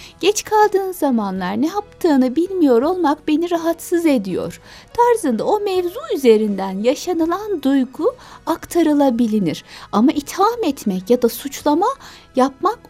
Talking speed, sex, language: 110 wpm, female, Turkish